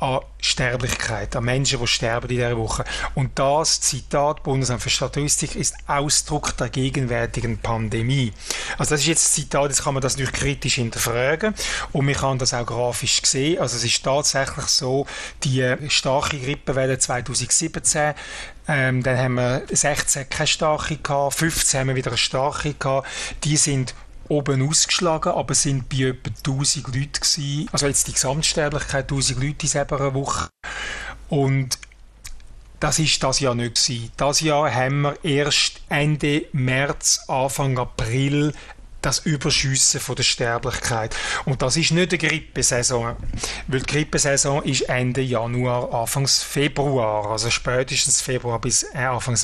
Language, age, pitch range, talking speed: German, 30-49, 125-145 Hz, 150 wpm